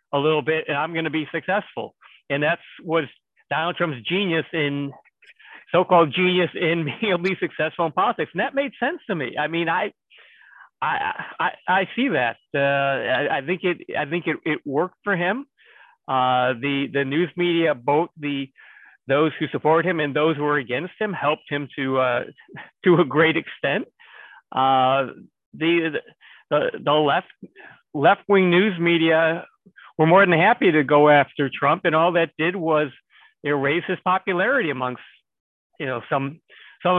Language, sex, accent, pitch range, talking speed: English, male, American, 145-185 Hz, 170 wpm